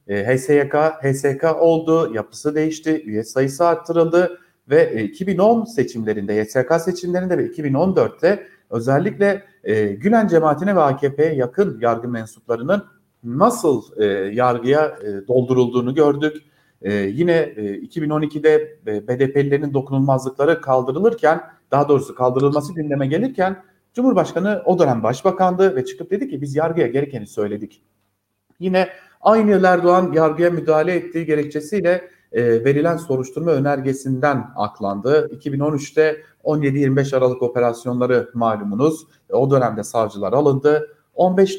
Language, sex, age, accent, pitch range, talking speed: German, male, 40-59, Turkish, 130-180 Hz, 105 wpm